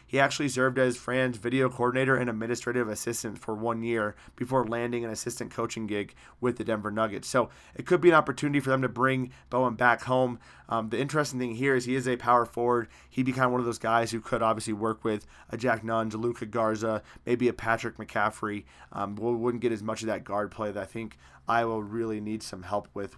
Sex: male